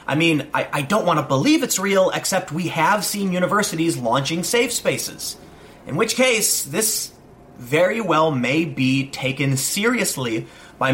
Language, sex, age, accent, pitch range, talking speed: English, male, 30-49, American, 130-180 Hz, 160 wpm